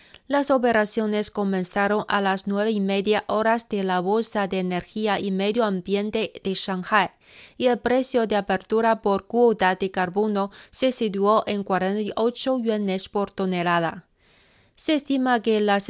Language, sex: Spanish, female